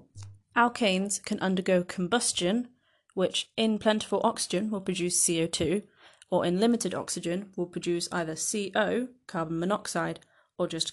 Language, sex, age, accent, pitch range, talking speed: English, female, 30-49, British, 170-205 Hz, 125 wpm